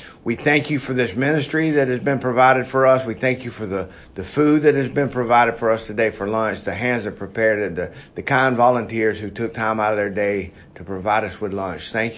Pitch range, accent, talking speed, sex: 110-135 Hz, American, 245 wpm, male